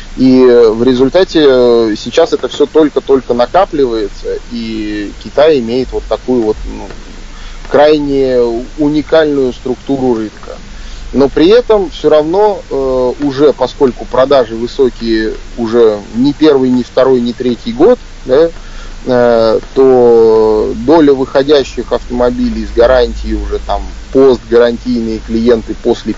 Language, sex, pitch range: Russian, male, 115-140 Hz